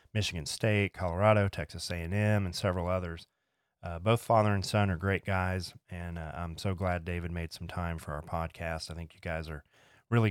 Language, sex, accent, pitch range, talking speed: English, male, American, 90-105 Hz, 200 wpm